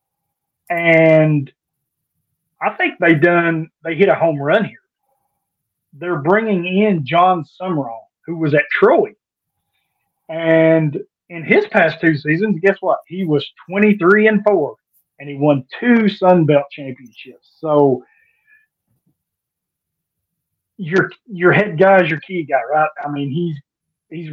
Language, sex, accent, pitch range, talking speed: English, male, American, 150-180 Hz, 135 wpm